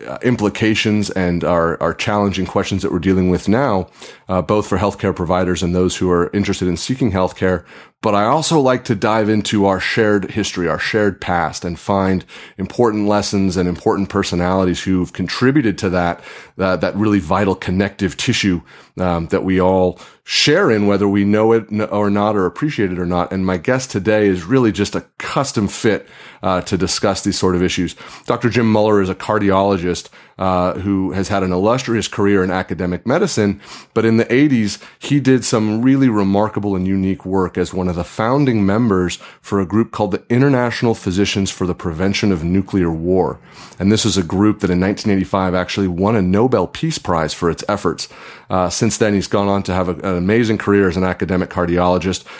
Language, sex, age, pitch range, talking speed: English, male, 30-49, 90-105 Hz, 190 wpm